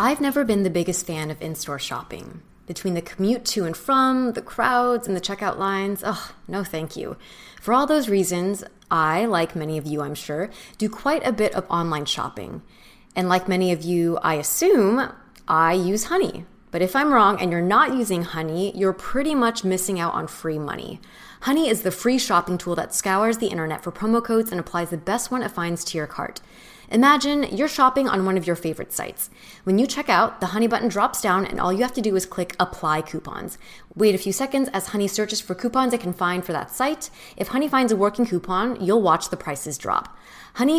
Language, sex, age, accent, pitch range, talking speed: English, female, 20-39, American, 175-240 Hz, 220 wpm